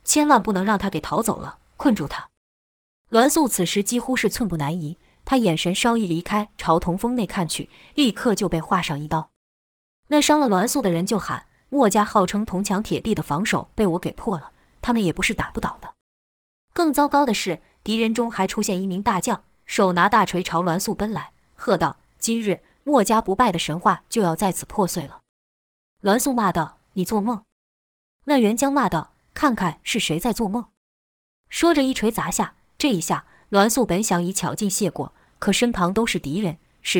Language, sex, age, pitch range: Chinese, female, 20-39, 175-235 Hz